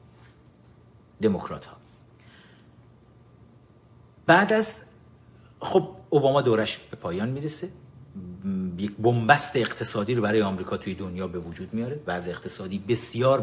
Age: 50-69